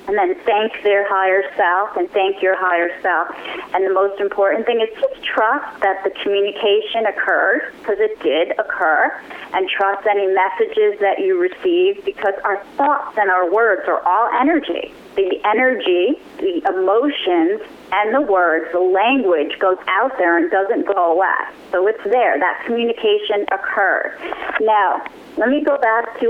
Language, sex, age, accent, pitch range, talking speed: English, female, 30-49, American, 190-310 Hz, 160 wpm